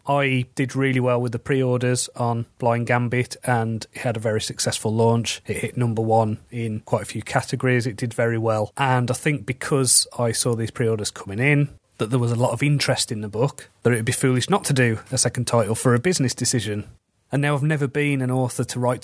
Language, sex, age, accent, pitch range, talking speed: English, male, 30-49, British, 115-135 Hz, 235 wpm